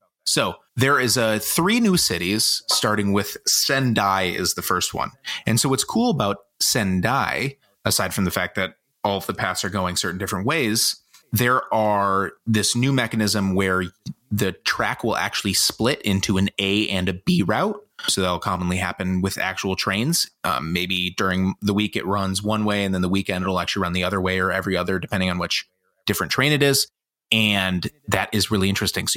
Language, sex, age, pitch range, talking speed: English, male, 30-49, 95-115 Hz, 195 wpm